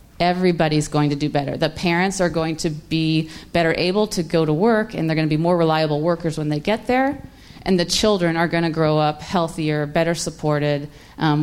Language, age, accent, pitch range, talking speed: English, 30-49, American, 155-195 Hz, 205 wpm